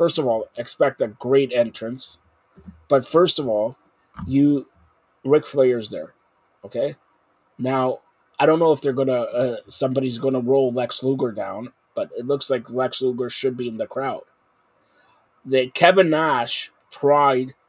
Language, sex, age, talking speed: English, male, 30-49, 155 wpm